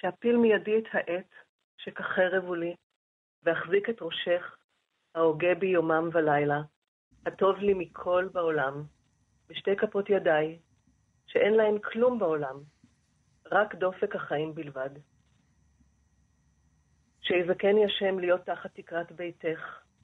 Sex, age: female, 40-59